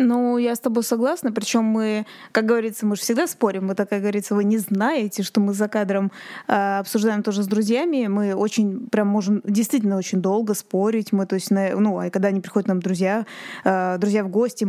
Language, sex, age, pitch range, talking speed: Russian, female, 20-39, 200-235 Hz, 205 wpm